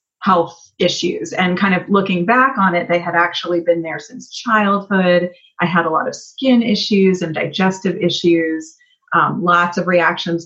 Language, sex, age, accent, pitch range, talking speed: English, female, 30-49, American, 175-210 Hz, 170 wpm